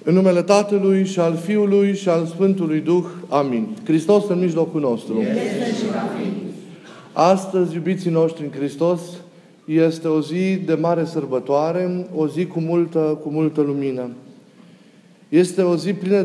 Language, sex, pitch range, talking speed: Romanian, male, 155-185 Hz, 135 wpm